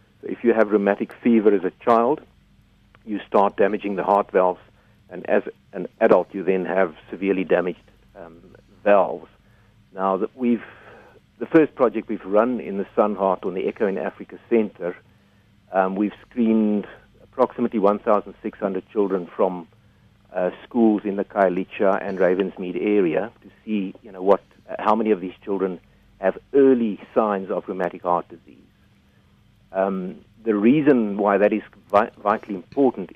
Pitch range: 95-110 Hz